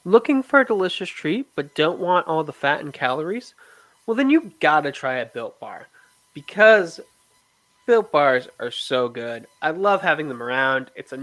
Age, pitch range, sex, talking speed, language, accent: 20-39, 135-195 Hz, male, 185 wpm, English, American